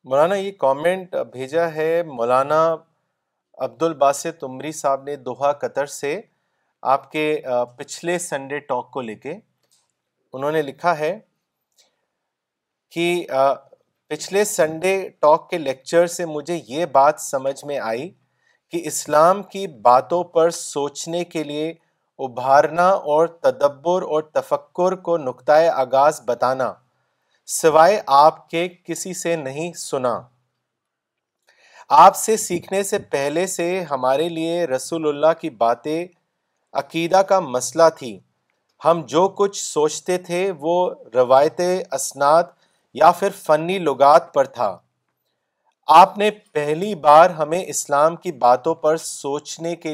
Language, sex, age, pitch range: Urdu, male, 30-49, 140-175 Hz